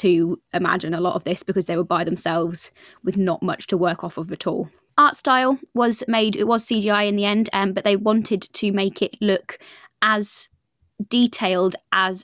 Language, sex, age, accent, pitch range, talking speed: English, female, 20-39, British, 180-215 Hz, 200 wpm